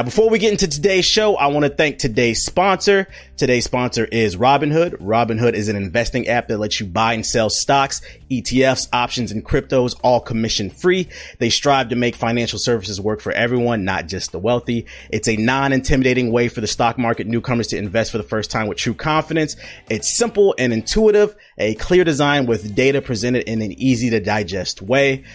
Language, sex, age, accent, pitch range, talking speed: English, male, 30-49, American, 110-135 Hz, 195 wpm